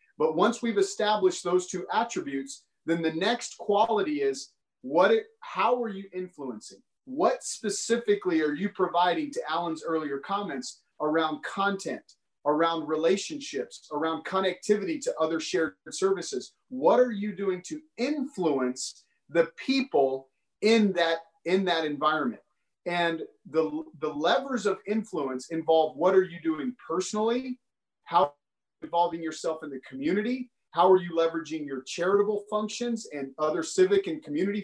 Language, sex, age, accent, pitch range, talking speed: English, male, 30-49, American, 160-220 Hz, 135 wpm